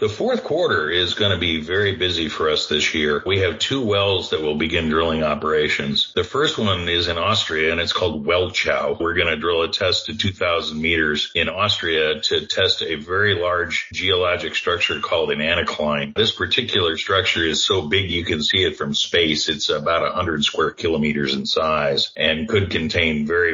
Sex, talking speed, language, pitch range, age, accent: male, 195 wpm, English, 80-110 Hz, 50-69, American